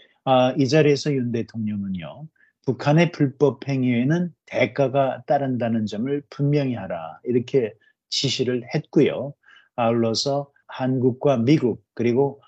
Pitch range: 120-150 Hz